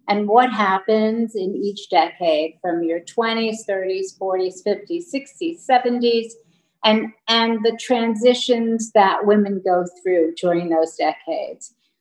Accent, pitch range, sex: American, 180-225 Hz, female